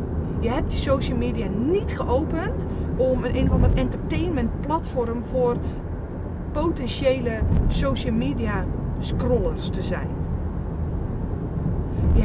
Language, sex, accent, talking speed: Dutch, female, Dutch, 105 wpm